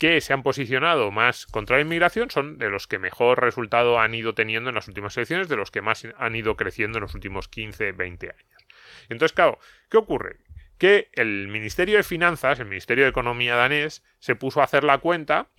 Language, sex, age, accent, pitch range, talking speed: Spanish, male, 30-49, Spanish, 120-165 Hz, 210 wpm